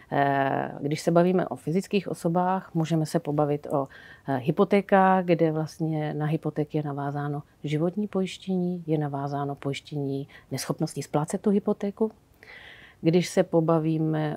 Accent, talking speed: native, 120 wpm